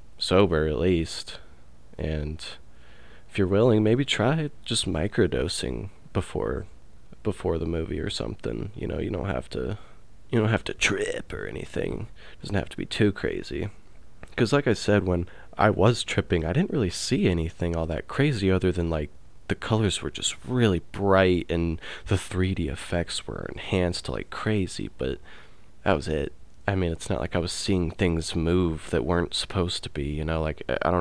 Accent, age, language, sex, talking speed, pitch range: American, 20-39, English, male, 185 wpm, 80-100 Hz